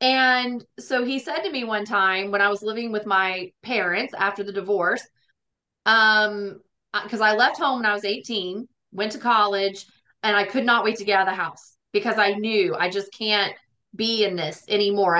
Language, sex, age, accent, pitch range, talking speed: English, female, 30-49, American, 195-230 Hz, 200 wpm